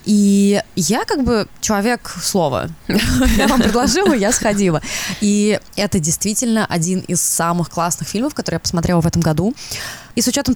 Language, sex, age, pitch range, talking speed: Russian, female, 20-39, 185-245 Hz, 160 wpm